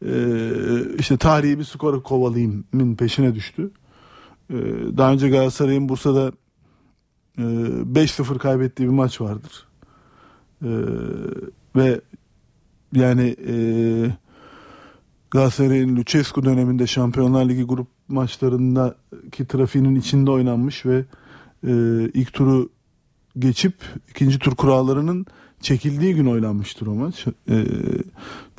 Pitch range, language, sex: 120-140 Hz, Turkish, male